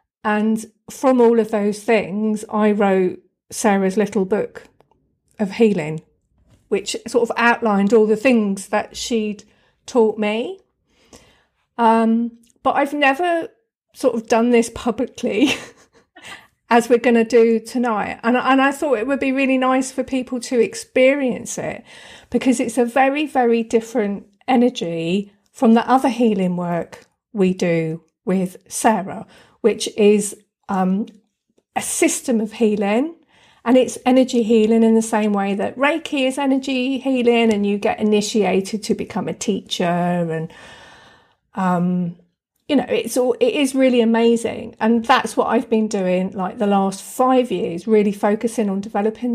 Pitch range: 210-255 Hz